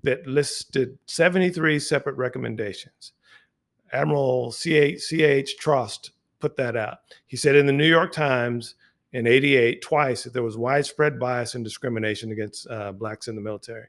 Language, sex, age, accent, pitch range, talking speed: English, male, 50-69, American, 115-145 Hz, 145 wpm